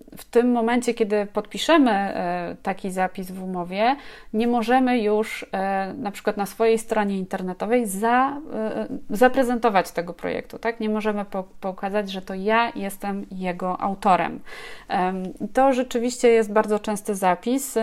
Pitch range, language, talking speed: 190-235 Hz, Polish, 125 wpm